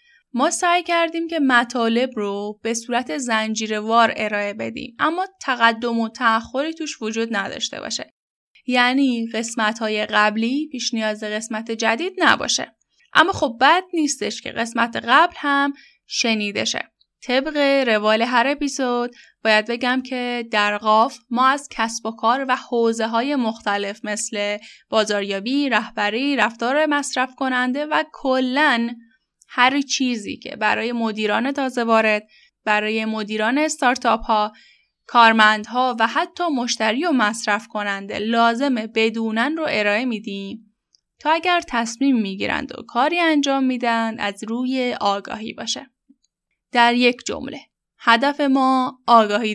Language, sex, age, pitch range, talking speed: Persian, female, 10-29, 220-270 Hz, 125 wpm